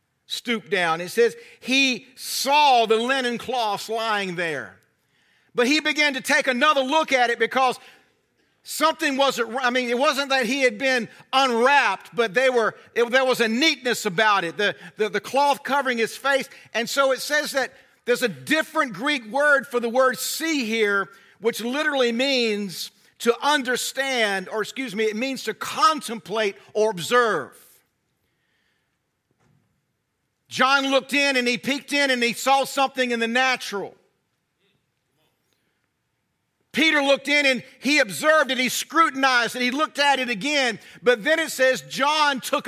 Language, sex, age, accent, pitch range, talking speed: English, male, 50-69, American, 235-285 Hz, 160 wpm